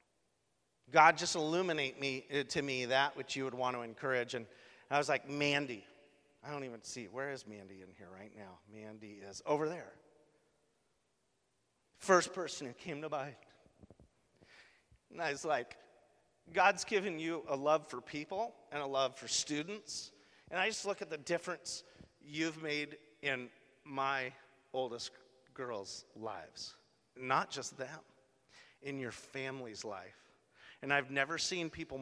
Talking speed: 150 wpm